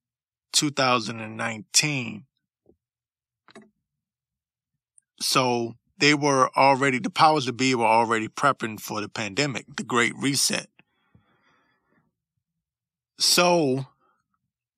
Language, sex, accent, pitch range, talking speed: English, male, American, 115-135 Hz, 75 wpm